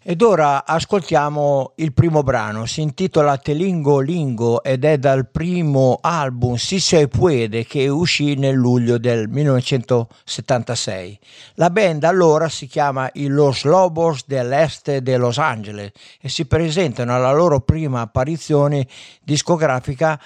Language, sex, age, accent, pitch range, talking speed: Italian, male, 60-79, native, 130-165 Hz, 130 wpm